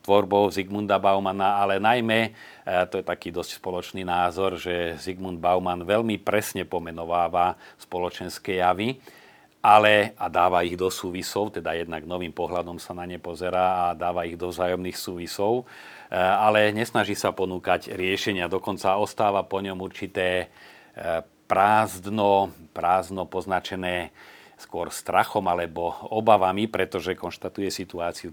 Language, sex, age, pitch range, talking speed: Slovak, male, 40-59, 85-100 Hz, 125 wpm